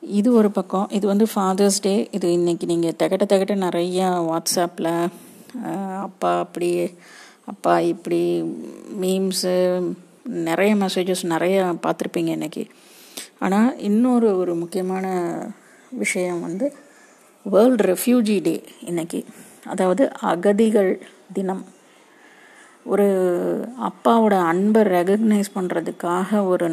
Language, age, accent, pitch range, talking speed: Tamil, 30-49, native, 175-210 Hz, 95 wpm